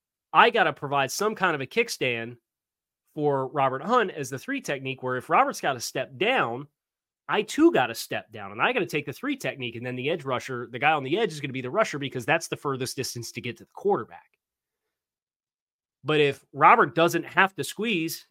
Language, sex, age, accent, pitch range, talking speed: English, male, 30-49, American, 130-170 Hz, 230 wpm